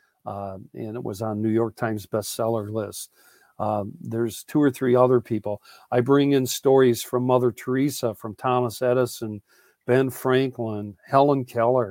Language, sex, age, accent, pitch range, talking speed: English, male, 50-69, American, 115-155 Hz, 150 wpm